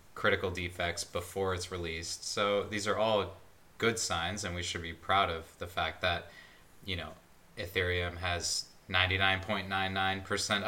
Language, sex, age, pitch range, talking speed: English, male, 20-39, 90-100 Hz, 140 wpm